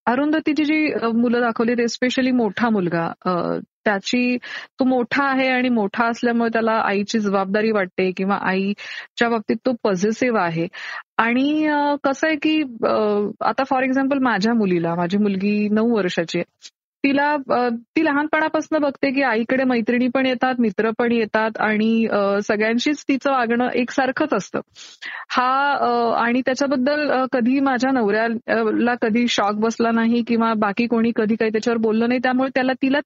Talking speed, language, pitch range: 140 wpm, Marathi, 210-255 Hz